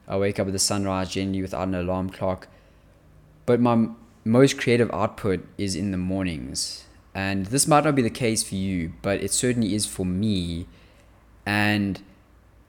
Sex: male